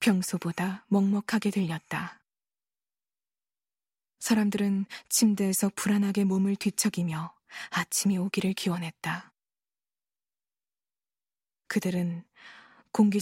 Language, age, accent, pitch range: Korean, 20-39, native, 180-220 Hz